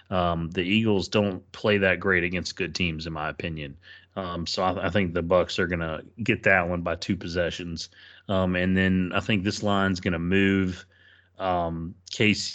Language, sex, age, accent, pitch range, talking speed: English, male, 30-49, American, 85-100 Hz, 195 wpm